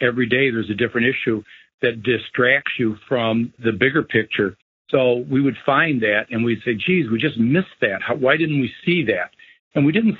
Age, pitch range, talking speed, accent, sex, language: 60-79, 115-135 Hz, 200 wpm, American, male, English